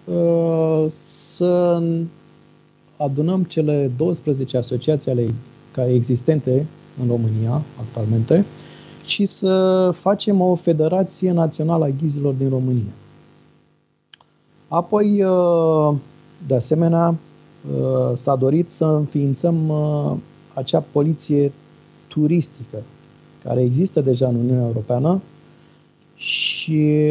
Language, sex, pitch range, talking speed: Romanian, male, 120-160 Hz, 85 wpm